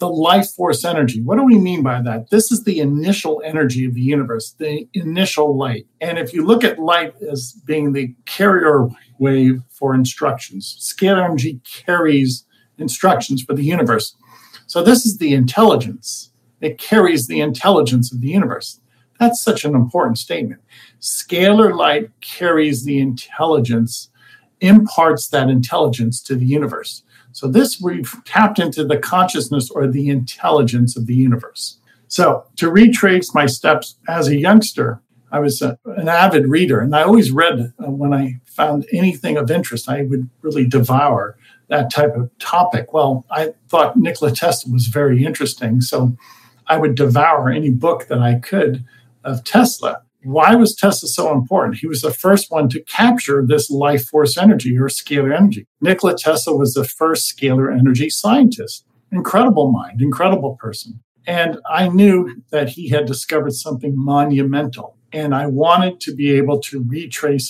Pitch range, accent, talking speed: 125-170 Hz, American, 160 wpm